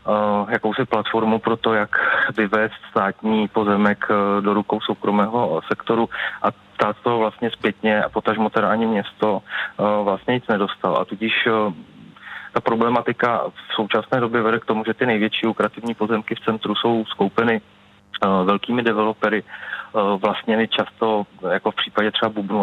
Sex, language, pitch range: male, Czech, 100-110 Hz